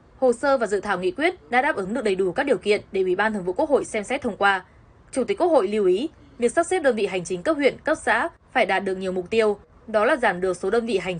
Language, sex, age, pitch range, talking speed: Vietnamese, female, 10-29, 185-250 Hz, 310 wpm